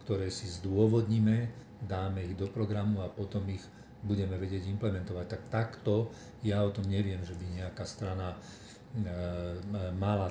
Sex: male